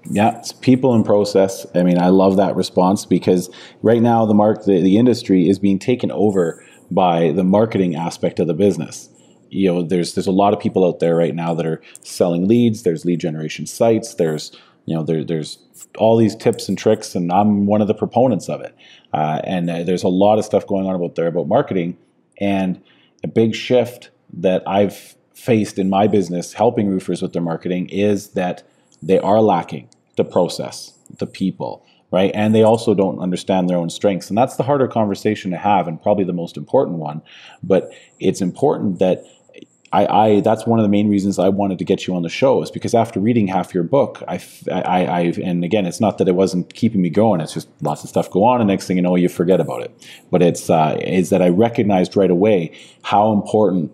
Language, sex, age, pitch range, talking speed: English, male, 30-49, 90-105 Hz, 215 wpm